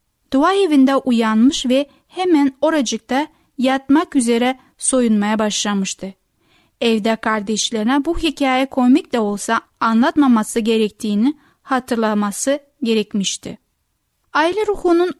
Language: Turkish